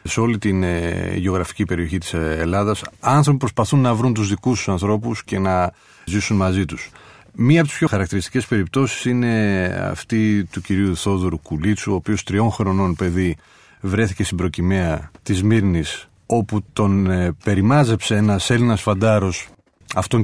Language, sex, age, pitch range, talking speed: Greek, male, 30-49, 95-120 Hz, 145 wpm